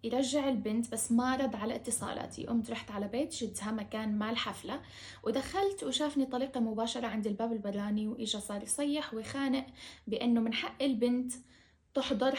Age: 10-29